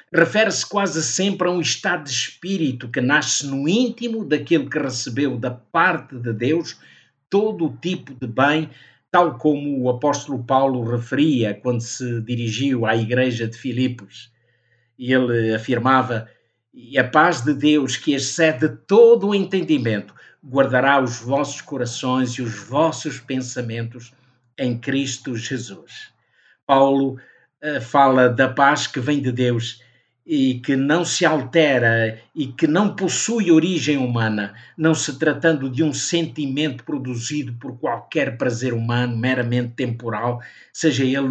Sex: male